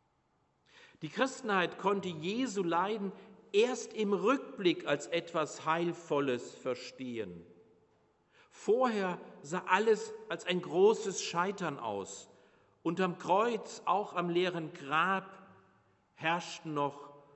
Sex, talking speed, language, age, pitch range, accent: male, 95 wpm, German, 50-69, 140-190 Hz, German